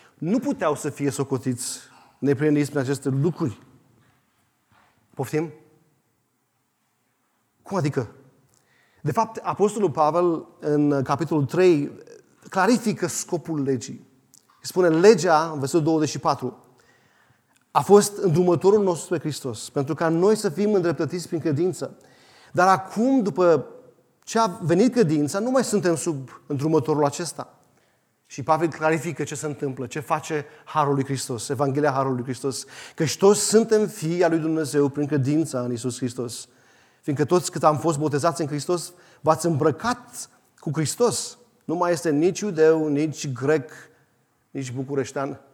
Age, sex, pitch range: 30-49, male, 140-180 Hz